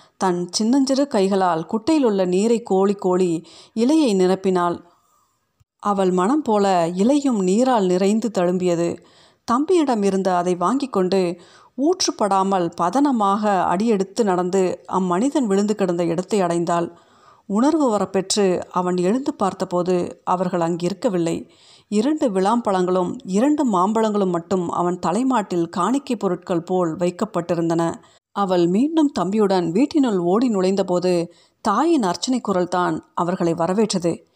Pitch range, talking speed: 175-230 Hz, 105 wpm